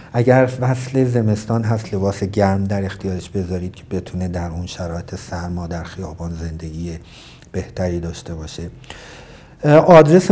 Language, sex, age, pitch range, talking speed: Persian, male, 50-69, 95-130 Hz, 130 wpm